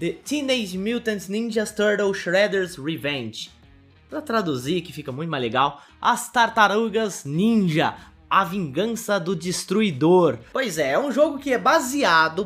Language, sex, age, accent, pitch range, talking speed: Portuguese, male, 20-39, Brazilian, 160-235 Hz, 140 wpm